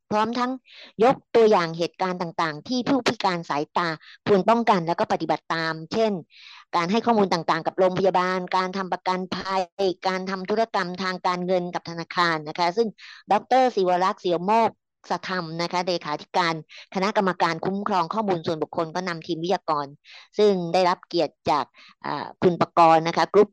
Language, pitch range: English, 165-195 Hz